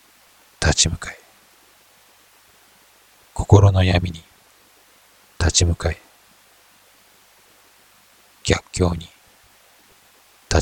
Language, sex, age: Japanese, male, 50-69